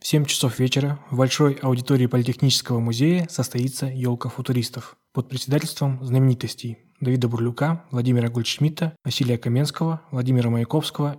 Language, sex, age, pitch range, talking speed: Russian, male, 20-39, 125-150 Hz, 125 wpm